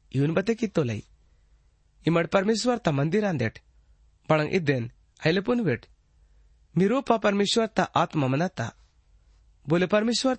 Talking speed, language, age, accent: 80 wpm, Hindi, 30-49, native